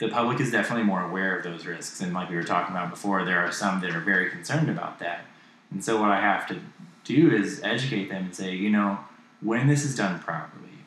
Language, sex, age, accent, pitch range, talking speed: English, male, 20-39, American, 90-115 Hz, 245 wpm